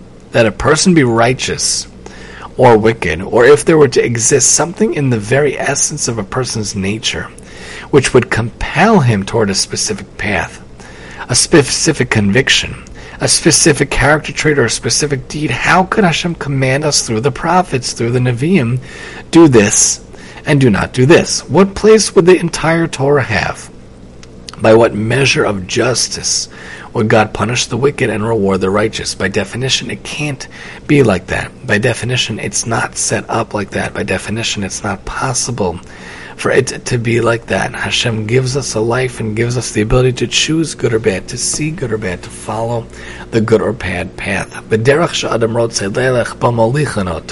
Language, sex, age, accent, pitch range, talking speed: English, male, 40-59, American, 100-135 Hz, 170 wpm